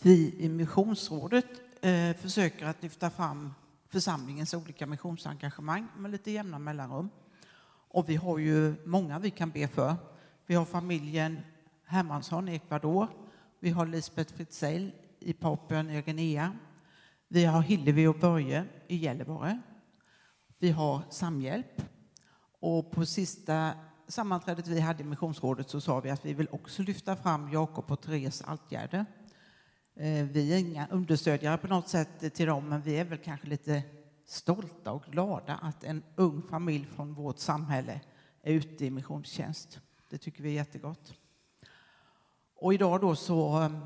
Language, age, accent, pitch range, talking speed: Swedish, 60-79, native, 150-175 Hz, 145 wpm